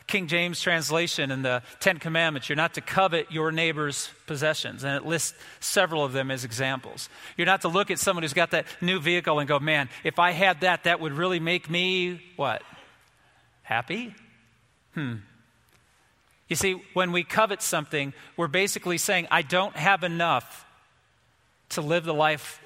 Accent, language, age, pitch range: American, English, 40-59, 145-180 Hz